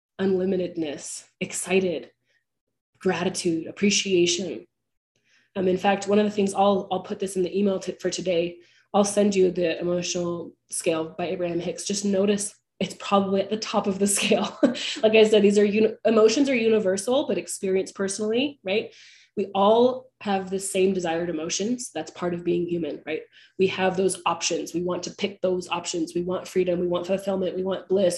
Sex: female